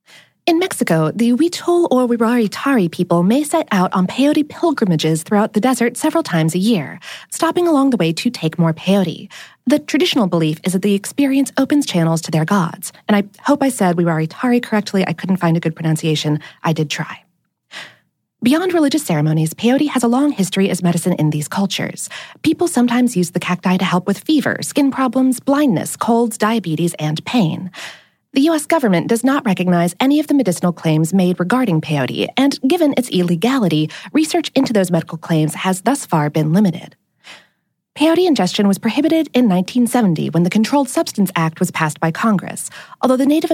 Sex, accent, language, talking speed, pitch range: female, American, English, 180 wpm, 175-275 Hz